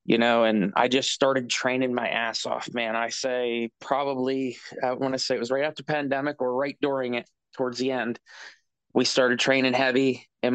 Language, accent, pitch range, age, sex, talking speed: English, American, 125-140 Hz, 20-39, male, 200 wpm